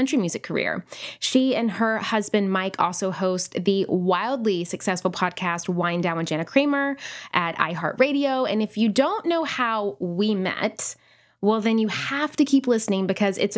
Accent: American